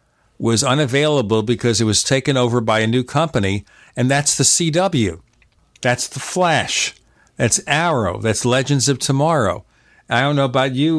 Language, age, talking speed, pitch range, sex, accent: English, 50-69, 160 wpm, 115-135 Hz, male, American